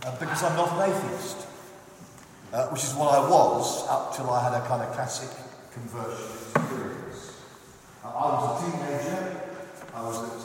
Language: English